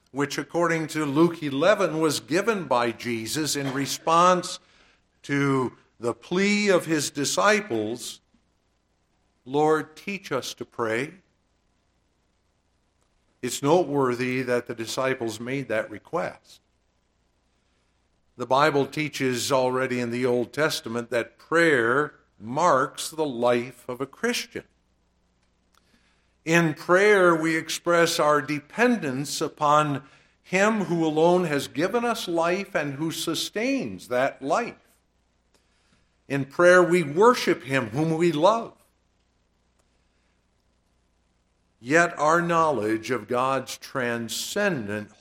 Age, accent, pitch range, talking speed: 60-79, American, 115-170 Hz, 105 wpm